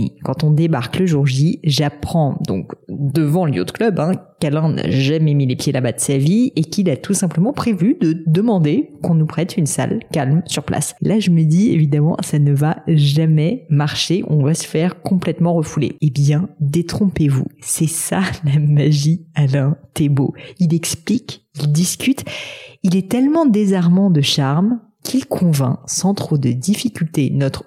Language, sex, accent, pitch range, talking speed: French, female, French, 140-175 Hz, 180 wpm